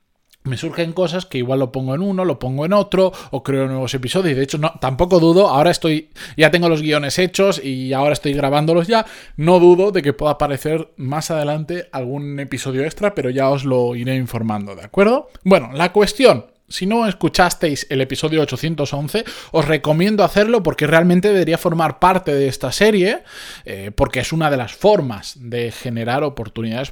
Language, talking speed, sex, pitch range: Spanish, 185 wpm, male, 130-175 Hz